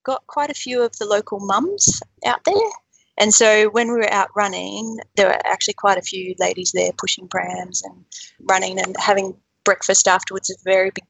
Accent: Australian